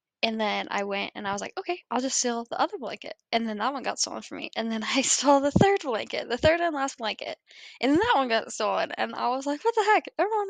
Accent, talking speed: American, 280 wpm